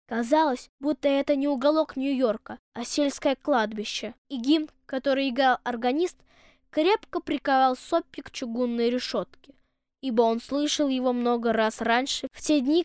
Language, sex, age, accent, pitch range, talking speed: Russian, female, 20-39, native, 250-305 Hz, 140 wpm